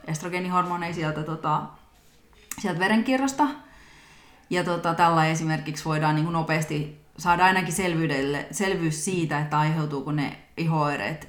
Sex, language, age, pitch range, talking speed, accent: female, Finnish, 30-49, 155-210 Hz, 105 wpm, native